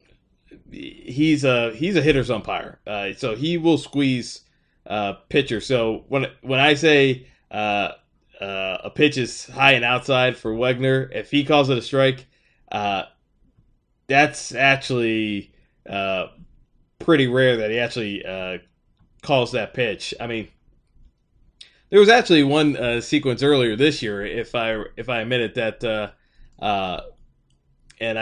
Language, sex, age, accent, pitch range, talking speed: English, male, 20-39, American, 110-150 Hz, 145 wpm